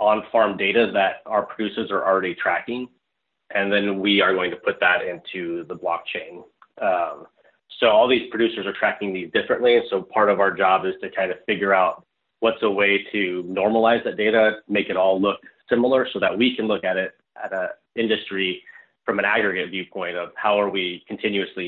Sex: male